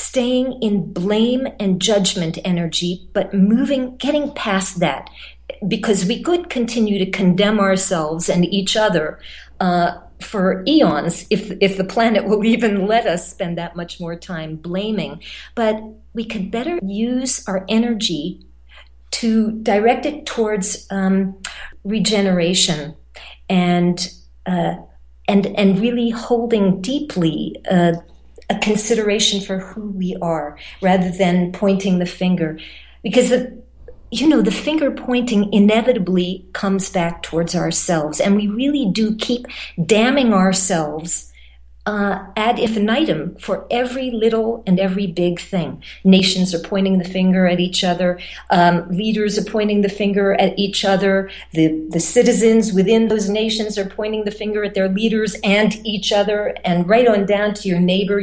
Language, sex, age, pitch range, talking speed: English, female, 50-69, 175-220 Hz, 145 wpm